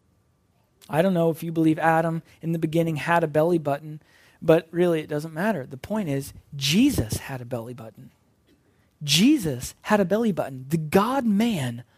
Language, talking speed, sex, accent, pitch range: English, 170 wpm, male, American, 140-180 Hz